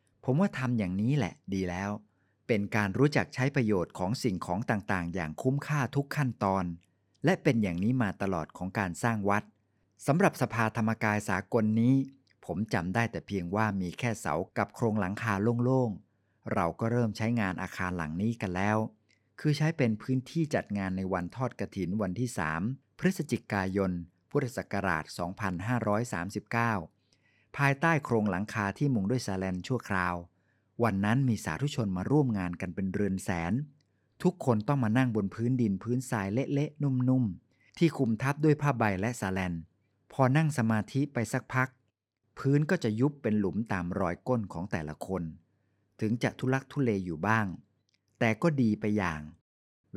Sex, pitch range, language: male, 95-130 Hz, Thai